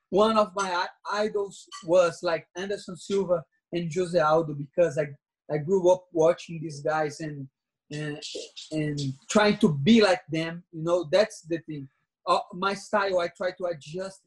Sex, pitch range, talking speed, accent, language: male, 165-210 Hz, 170 wpm, Brazilian, English